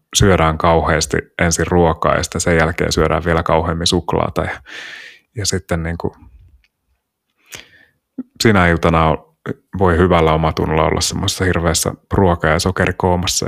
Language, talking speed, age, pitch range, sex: Finnish, 120 wpm, 30-49, 80-95 Hz, male